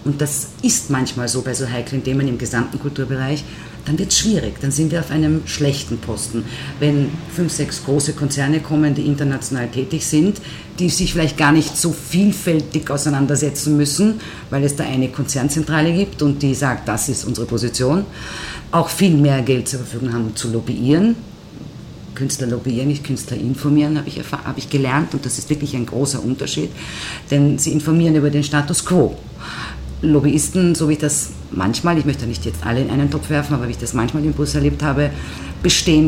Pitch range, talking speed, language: 125-155 Hz, 190 wpm, German